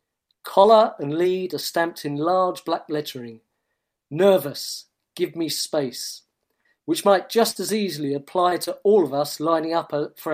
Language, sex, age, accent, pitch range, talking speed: English, male, 40-59, British, 145-185 Hz, 150 wpm